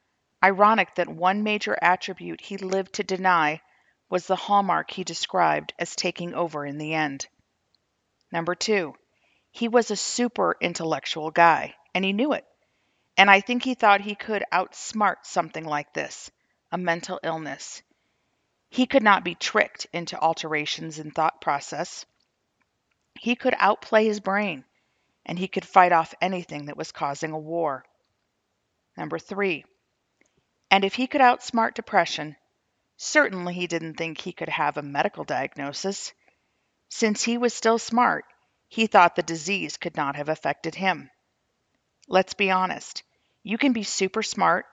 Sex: female